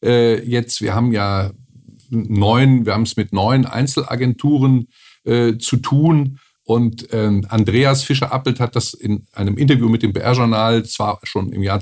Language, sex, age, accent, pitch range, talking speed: German, male, 50-69, German, 110-135 Hz, 150 wpm